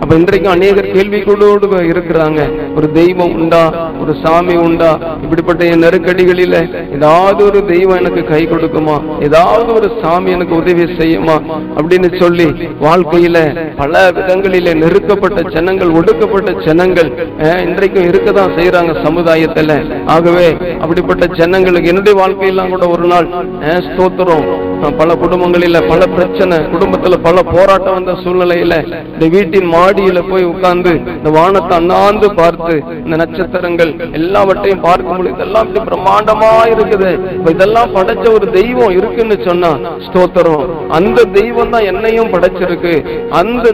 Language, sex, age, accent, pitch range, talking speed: Tamil, male, 50-69, native, 165-195 Hz, 115 wpm